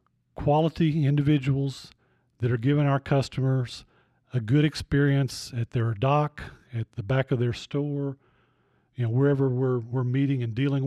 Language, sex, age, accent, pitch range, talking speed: English, male, 40-59, American, 120-140 Hz, 140 wpm